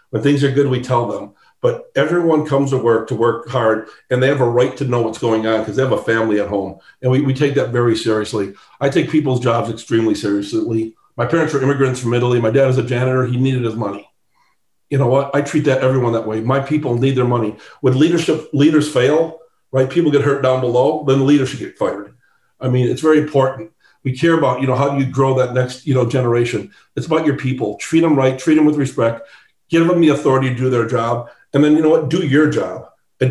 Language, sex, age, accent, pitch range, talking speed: English, male, 50-69, American, 125-155 Hz, 245 wpm